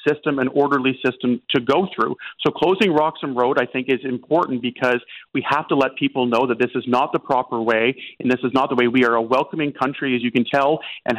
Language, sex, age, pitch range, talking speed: English, male, 40-59, 125-140 Hz, 240 wpm